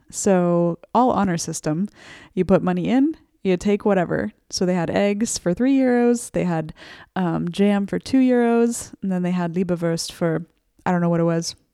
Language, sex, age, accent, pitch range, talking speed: English, female, 20-39, American, 170-210 Hz, 190 wpm